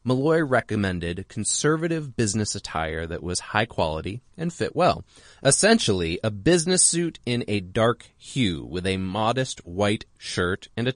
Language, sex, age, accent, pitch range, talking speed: English, male, 30-49, American, 95-145 Hz, 150 wpm